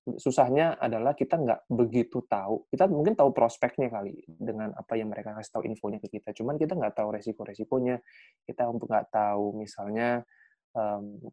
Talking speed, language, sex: 160 wpm, Indonesian, male